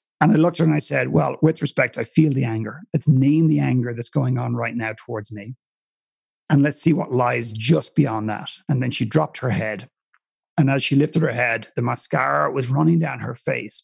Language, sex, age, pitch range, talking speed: English, male, 40-59, 125-165 Hz, 230 wpm